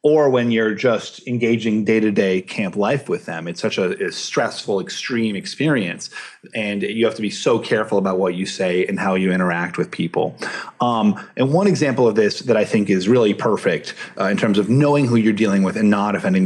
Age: 30-49